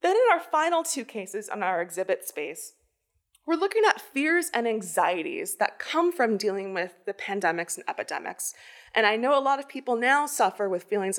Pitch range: 205-315 Hz